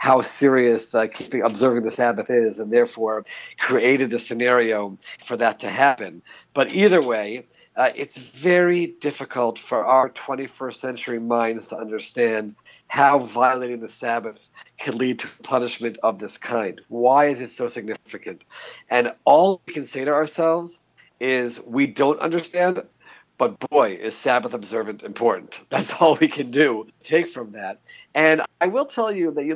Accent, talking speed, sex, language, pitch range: American, 160 wpm, male, English, 115-145 Hz